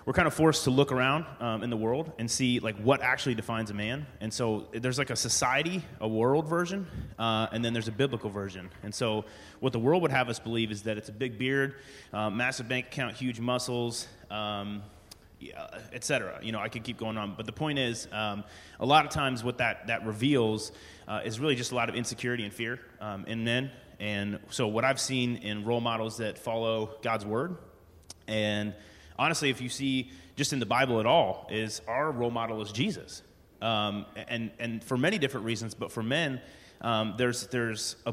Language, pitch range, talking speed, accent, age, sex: English, 105-130 Hz, 210 wpm, American, 30-49, male